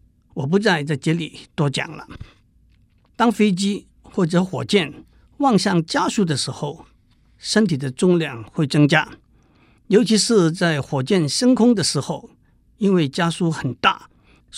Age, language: 60-79, Chinese